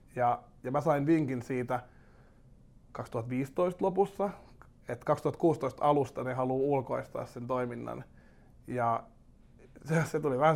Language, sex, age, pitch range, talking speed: Finnish, male, 30-49, 125-140 Hz, 120 wpm